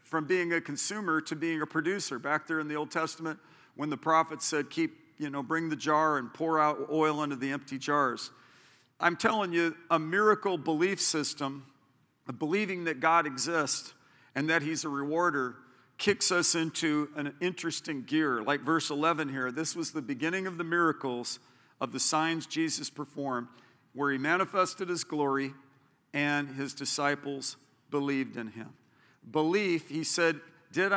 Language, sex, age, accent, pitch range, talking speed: English, male, 50-69, American, 140-165 Hz, 165 wpm